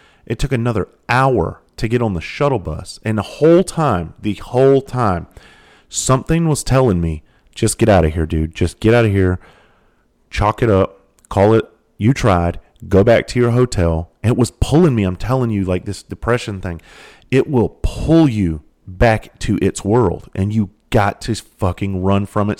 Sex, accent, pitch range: male, American, 90-115 Hz